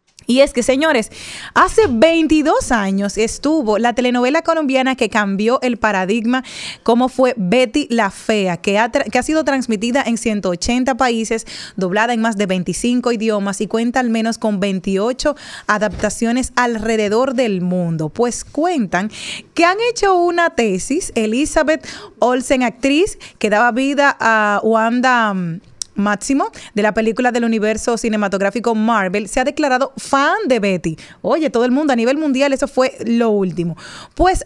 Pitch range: 215-270 Hz